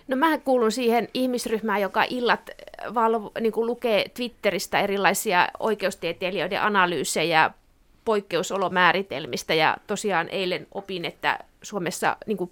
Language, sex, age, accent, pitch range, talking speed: Finnish, female, 30-49, native, 195-245 Hz, 105 wpm